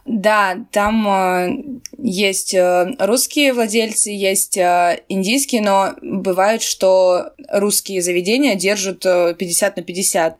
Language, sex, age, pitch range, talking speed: Russian, female, 20-39, 185-220 Hz, 110 wpm